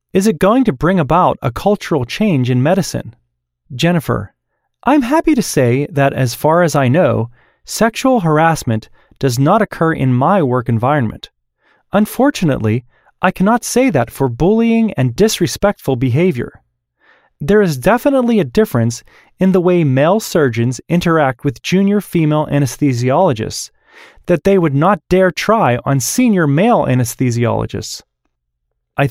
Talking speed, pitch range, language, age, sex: 140 wpm, 125-200 Hz, English, 30-49, male